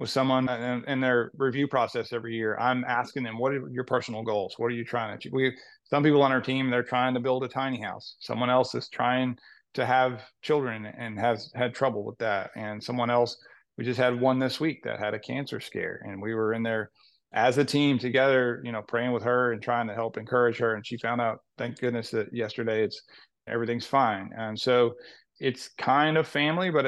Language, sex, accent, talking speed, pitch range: English, male, American, 225 wpm, 115-135 Hz